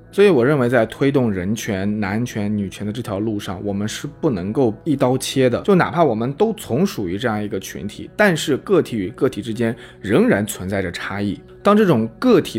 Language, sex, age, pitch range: Chinese, male, 20-39, 105-145 Hz